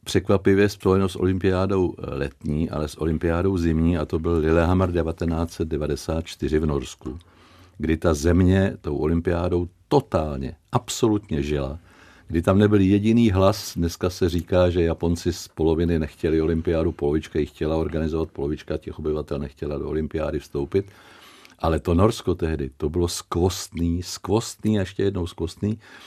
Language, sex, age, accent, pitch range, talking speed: Czech, male, 50-69, native, 80-100 Hz, 140 wpm